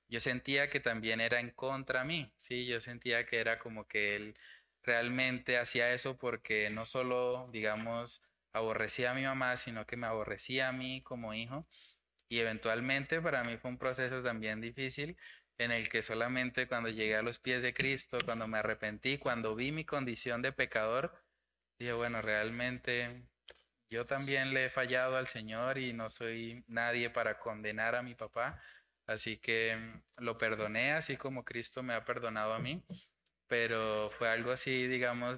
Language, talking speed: Spanish, 170 wpm